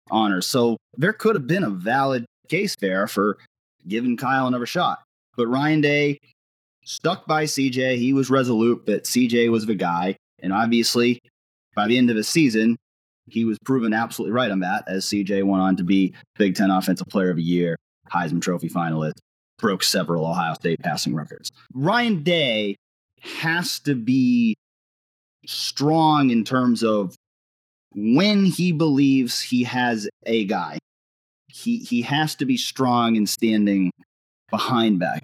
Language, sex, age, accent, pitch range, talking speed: English, male, 30-49, American, 100-135 Hz, 155 wpm